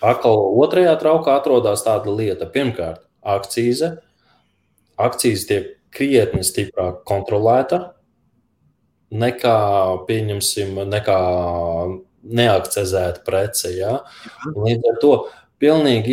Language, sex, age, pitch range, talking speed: English, male, 20-39, 95-120 Hz, 90 wpm